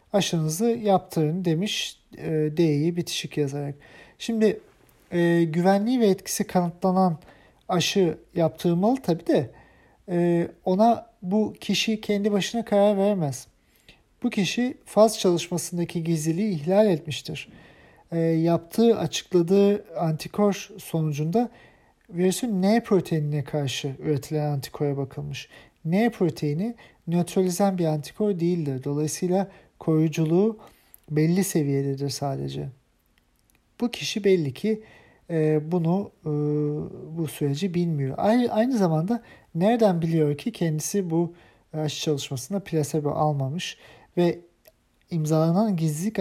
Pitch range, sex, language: 155-200 Hz, male, German